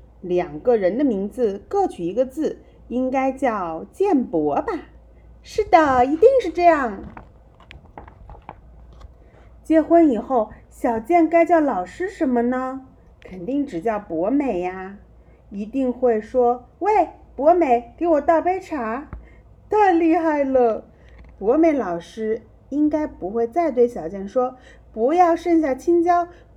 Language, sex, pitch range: English, female, 230-325 Hz